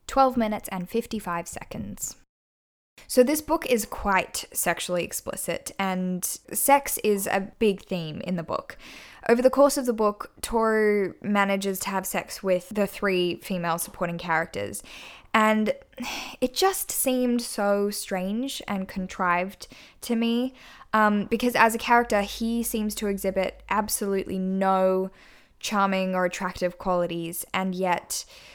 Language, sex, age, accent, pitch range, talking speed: English, female, 10-29, Australian, 185-225 Hz, 135 wpm